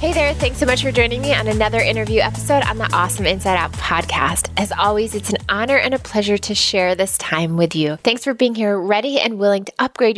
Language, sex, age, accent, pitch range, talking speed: English, female, 20-39, American, 180-225 Hz, 240 wpm